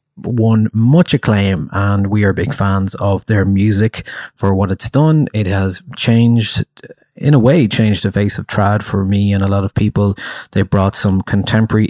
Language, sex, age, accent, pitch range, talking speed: English, male, 30-49, Irish, 100-120 Hz, 185 wpm